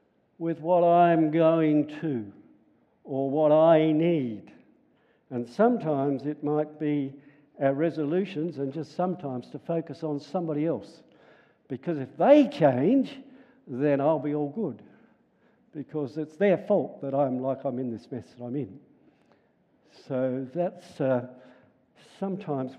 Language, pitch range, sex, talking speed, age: English, 130-160 Hz, male, 135 wpm, 60-79